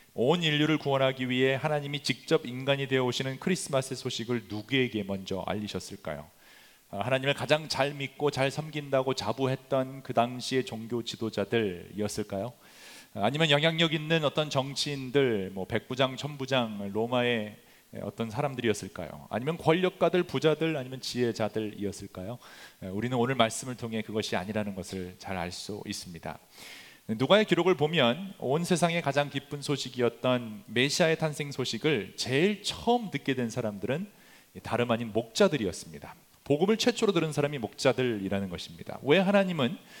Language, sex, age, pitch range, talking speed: English, male, 30-49, 110-150 Hz, 115 wpm